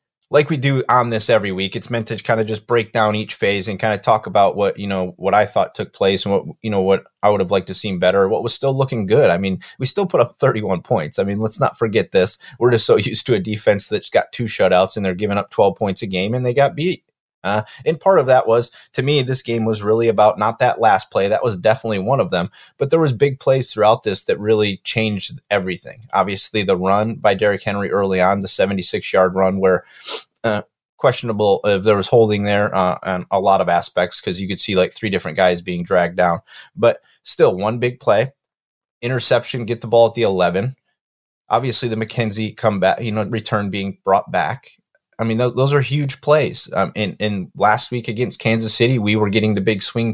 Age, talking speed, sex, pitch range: 30-49, 240 wpm, male, 95-120 Hz